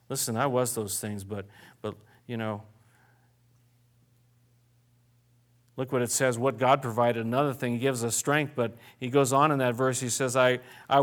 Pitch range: 120-180 Hz